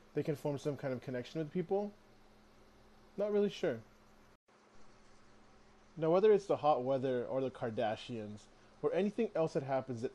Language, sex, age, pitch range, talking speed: English, male, 20-39, 125-160 Hz, 160 wpm